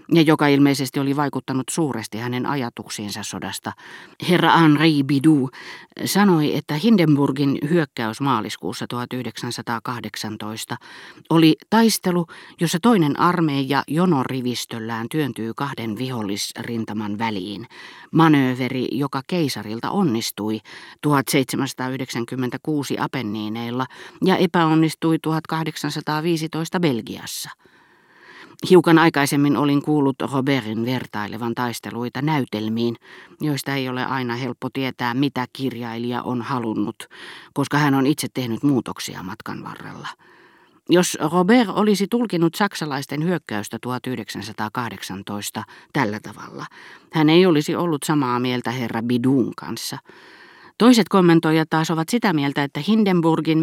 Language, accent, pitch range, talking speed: Finnish, native, 120-160 Hz, 100 wpm